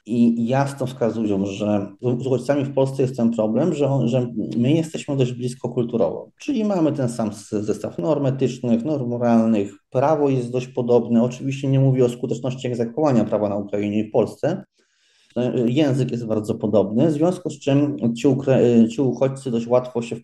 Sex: male